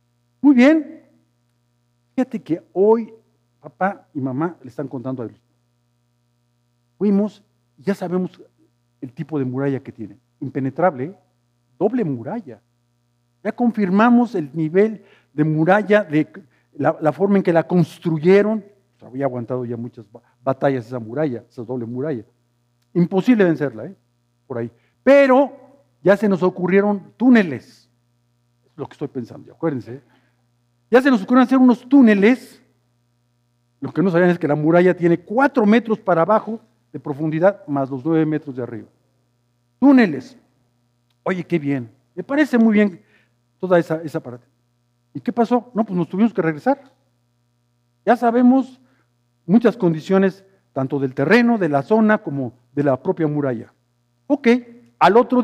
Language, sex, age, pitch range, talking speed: Spanish, male, 50-69, 120-200 Hz, 145 wpm